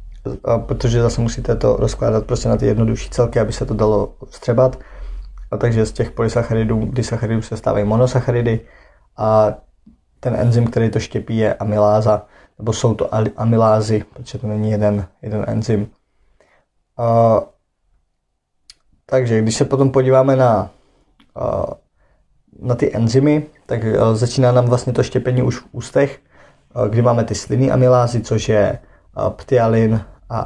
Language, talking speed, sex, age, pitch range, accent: Czech, 140 wpm, male, 20-39, 110-125 Hz, native